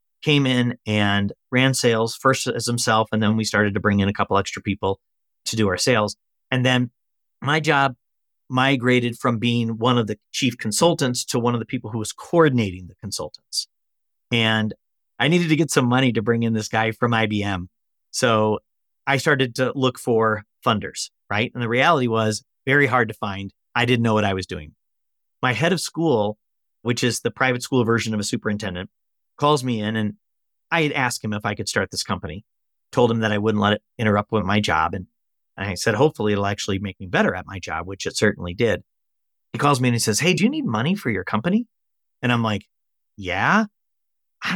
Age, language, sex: 40-59, English, male